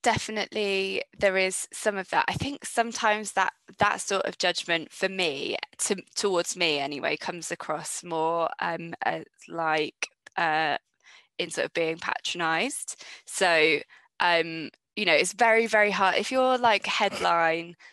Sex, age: female, 20-39